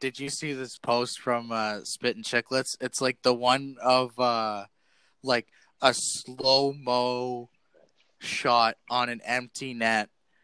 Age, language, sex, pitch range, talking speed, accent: 20-39, English, male, 120-145 Hz, 145 wpm, American